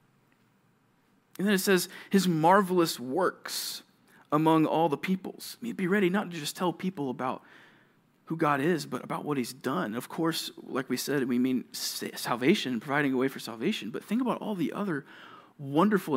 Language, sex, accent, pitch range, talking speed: English, male, American, 155-230 Hz, 175 wpm